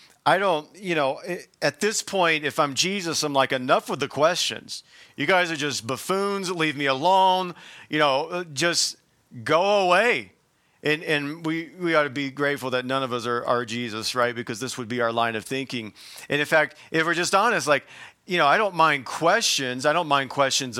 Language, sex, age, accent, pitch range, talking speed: English, male, 40-59, American, 135-175 Hz, 205 wpm